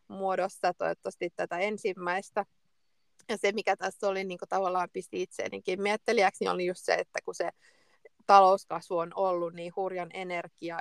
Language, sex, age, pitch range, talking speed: Finnish, female, 30-49, 170-200 Hz, 150 wpm